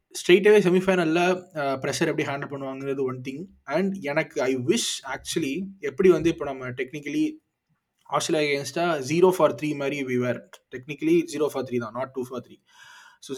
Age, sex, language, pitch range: 20-39, male, Tamil, 125-165 Hz